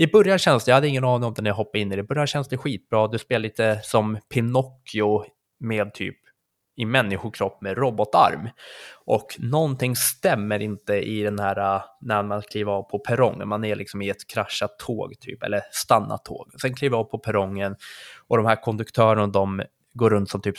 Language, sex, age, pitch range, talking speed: Swedish, male, 20-39, 105-125 Hz, 210 wpm